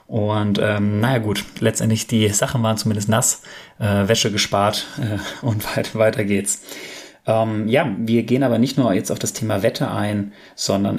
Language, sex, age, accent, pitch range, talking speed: German, male, 30-49, German, 100-120 Hz, 175 wpm